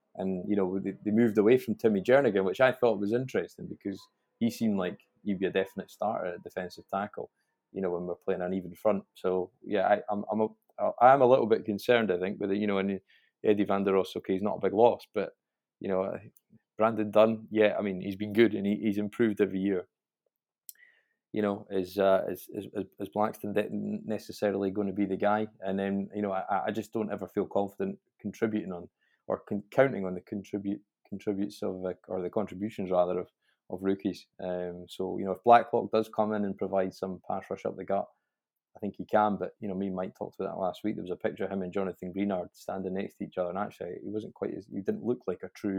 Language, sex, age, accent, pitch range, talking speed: English, male, 20-39, British, 95-105 Hz, 240 wpm